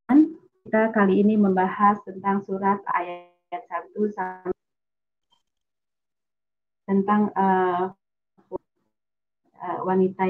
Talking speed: 65 wpm